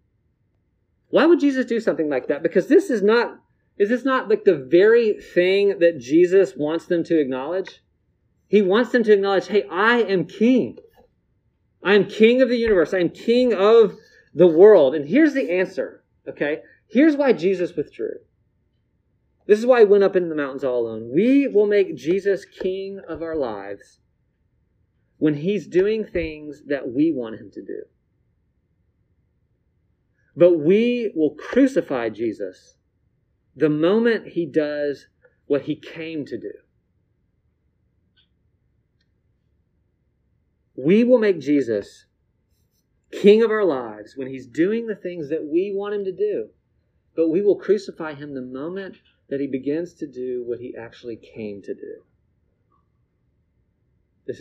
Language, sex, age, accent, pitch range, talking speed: English, male, 30-49, American, 145-240 Hz, 150 wpm